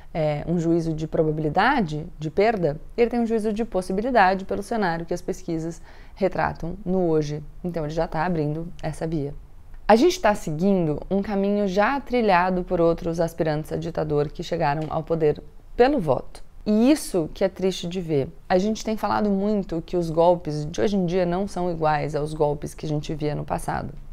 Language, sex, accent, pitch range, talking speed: Portuguese, female, Brazilian, 155-200 Hz, 190 wpm